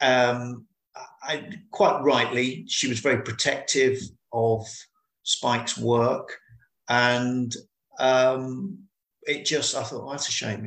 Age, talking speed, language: 50-69, 120 wpm, English